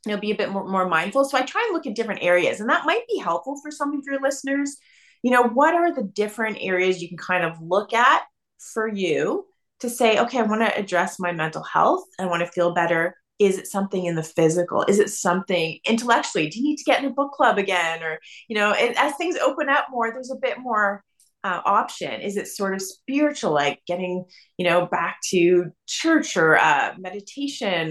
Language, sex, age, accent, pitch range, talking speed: English, female, 30-49, American, 180-245 Hz, 230 wpm